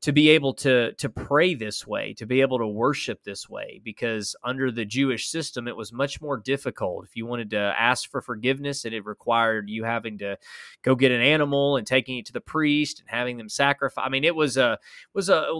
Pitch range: 115-140 Hz